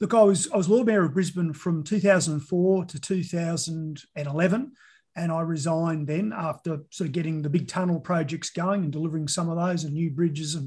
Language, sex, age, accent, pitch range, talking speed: English, male, 30-49, Australian, 160-190 Hz, 190 wpm